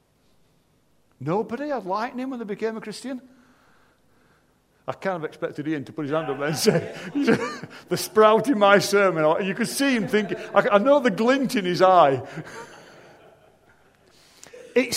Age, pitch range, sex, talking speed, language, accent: 50-69, 130-185 Hz, male, 160 wpm, English, British